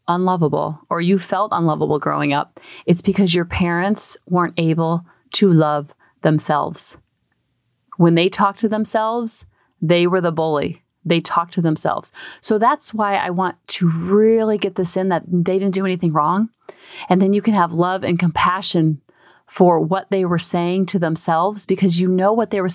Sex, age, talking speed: female, 30-49, 175 wpm